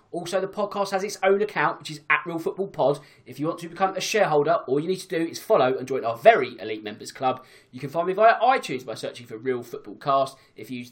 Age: 20-39